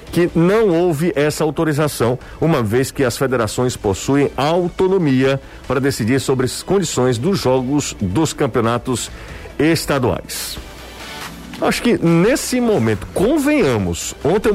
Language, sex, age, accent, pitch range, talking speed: Portuguese, male, 50-69, Brazilian, 125-190 Hz, 115 wpm